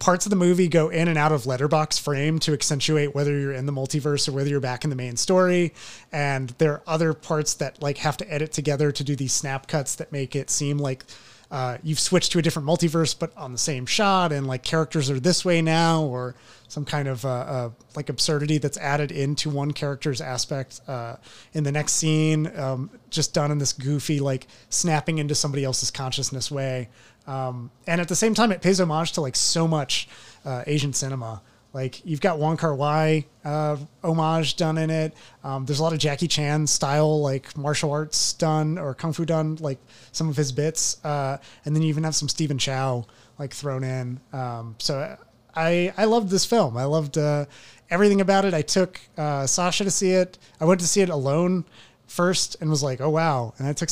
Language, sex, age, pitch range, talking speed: English, male, 30-49, 135-160 Hz, 215 wpm